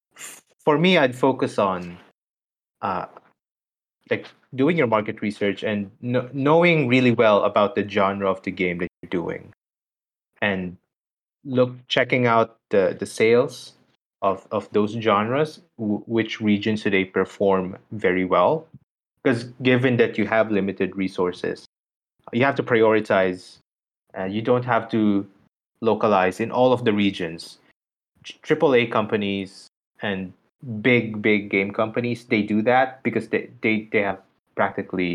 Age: 20-39